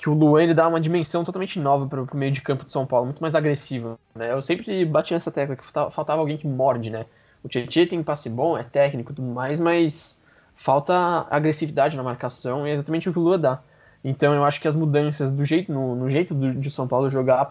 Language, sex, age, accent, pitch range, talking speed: Portuguese, male, 20-39, Brazilian, 130-165 Hz, 245 wpm